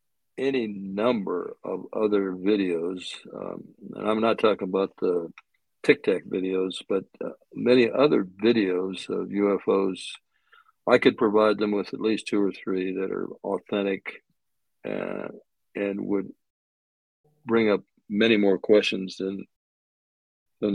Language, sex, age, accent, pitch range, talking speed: English, male, 60-79, American, 95-110 Hz, 130 wpm